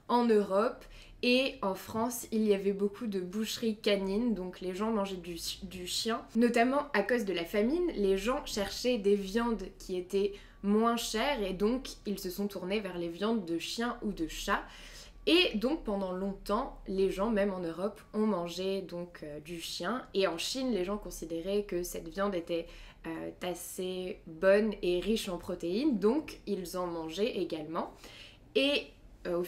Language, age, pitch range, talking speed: French, 20-39, 180-220 Hz, 180 wpm